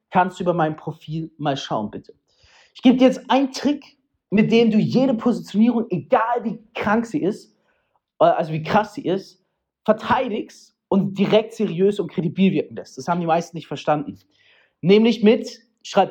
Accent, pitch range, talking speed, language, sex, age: German, 185-260 Hz, 170 wpm, German, male, 40-59